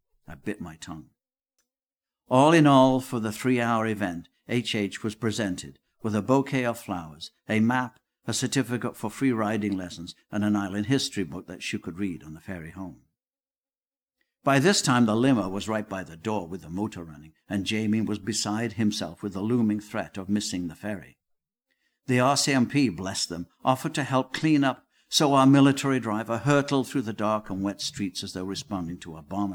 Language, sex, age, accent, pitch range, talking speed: English, male, 60-79, British, 100-135 Hz, 190 wpm